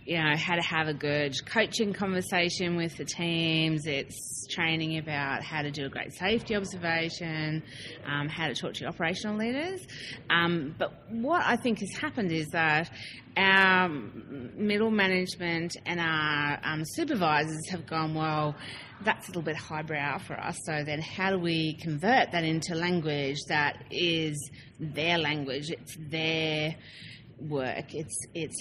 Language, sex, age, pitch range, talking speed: English, female, 30-49, 145-175 Hz, 155 wpm